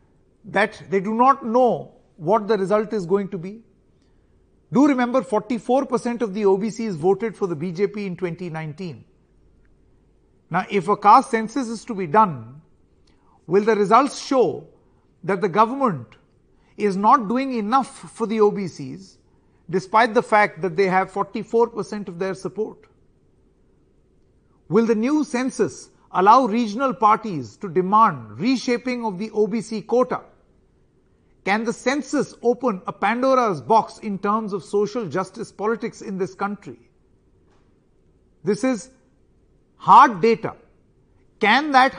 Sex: male